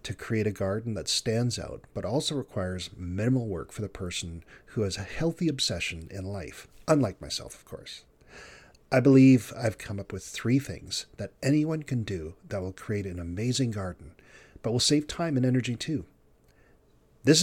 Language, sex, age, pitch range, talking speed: English, male, 40-59, 100-130 Hz, 180 wpm